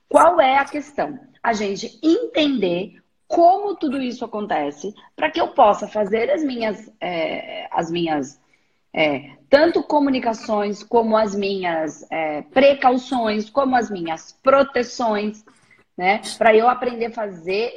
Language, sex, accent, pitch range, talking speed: Portuguese, female, Brazilian, 200-275 Hz, 130 wpm